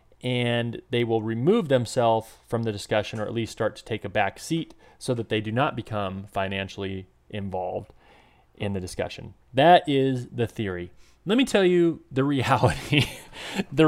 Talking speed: 170 wpm